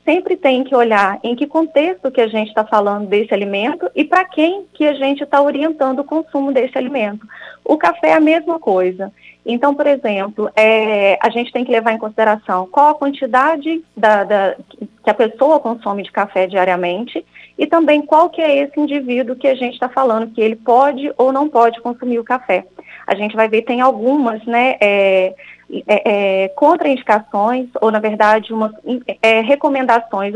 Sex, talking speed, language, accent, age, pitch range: female, 170 wpm, Portuguese, Brazilian, 20-39, 215-280 Hz